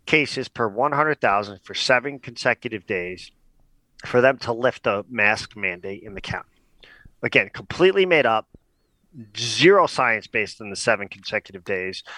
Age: 40-59